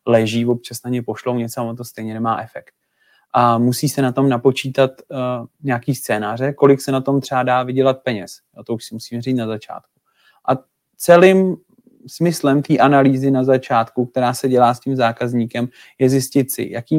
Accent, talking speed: native, 185 wpm